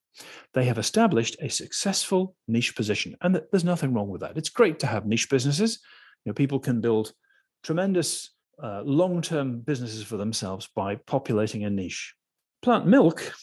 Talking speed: 160 wpm